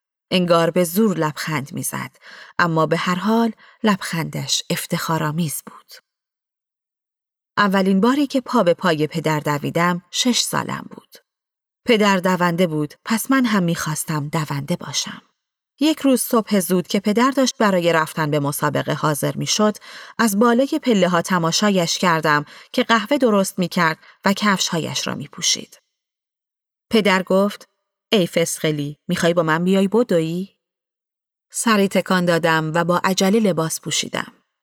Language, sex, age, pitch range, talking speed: Persian, female, 40-59, 165-220 Hz, 135 wpm